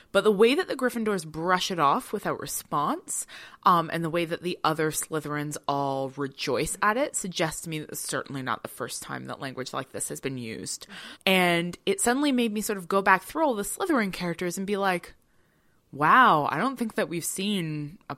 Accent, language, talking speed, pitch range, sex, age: American, English, 215 wpm, 145-190 Hz, female, 20-39